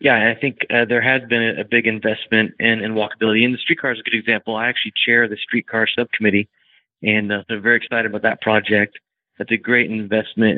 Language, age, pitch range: English, 30-49, 110-120 Hz